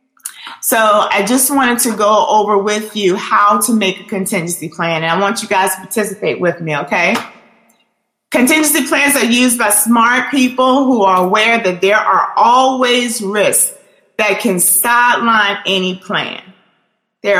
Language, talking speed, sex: English, 160 wpm, female